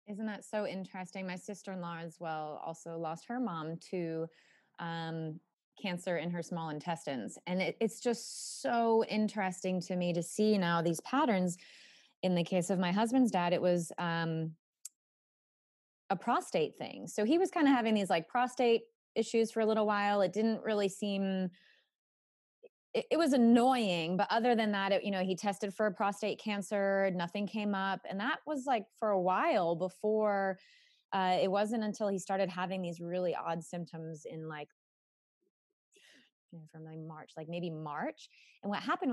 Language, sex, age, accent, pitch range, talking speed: English, female, 20-39, American, 165-220 Hz, 165 wpm